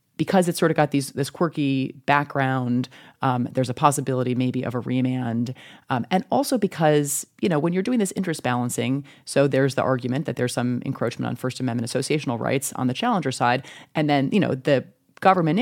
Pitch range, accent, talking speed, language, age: 125-155 Hz, American, 200 wpm, English, 30-49